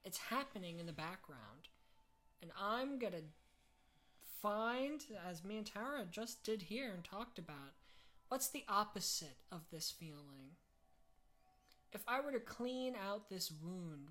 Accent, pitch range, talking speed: American, 145-215 Hz, 145 wpm